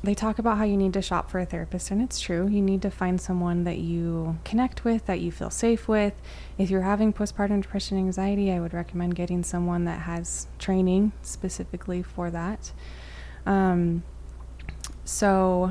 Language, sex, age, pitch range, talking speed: English, female, 20-39, 175-205 Hz, 180 wpm